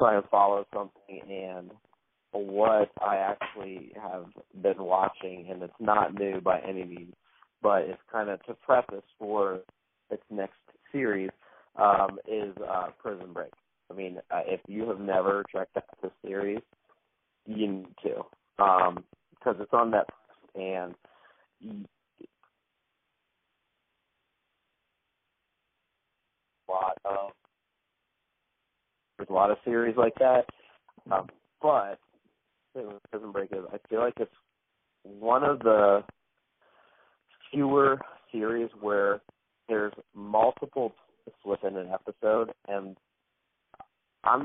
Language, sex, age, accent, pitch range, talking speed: English, male, 40-59, American, 95-110 Hz, 115 wpm